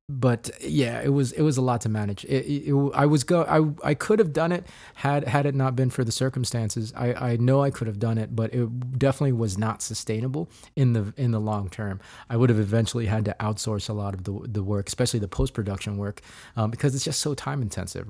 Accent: American